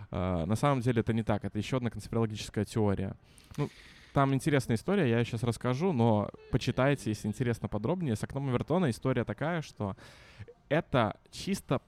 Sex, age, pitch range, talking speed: male, 20-39, 110-130 Hz, 160 wpm